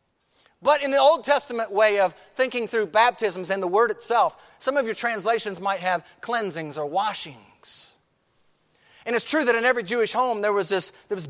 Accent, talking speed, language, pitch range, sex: American, 185 wpm, English, 165-265 Hz, male